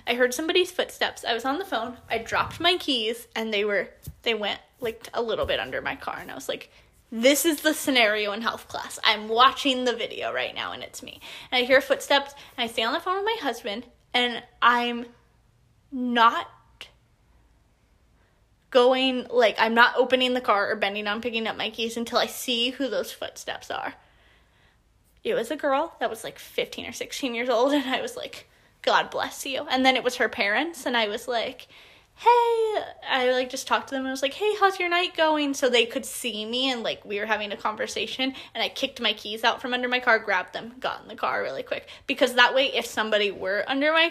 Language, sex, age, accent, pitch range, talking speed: English, female, 10-29, American, 235-310 Hz, 225 wpm